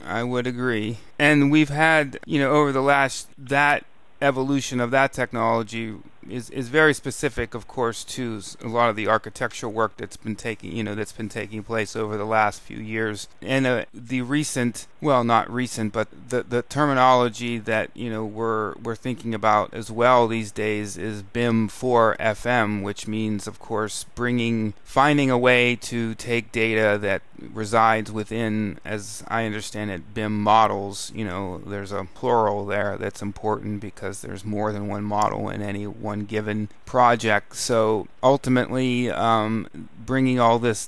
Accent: American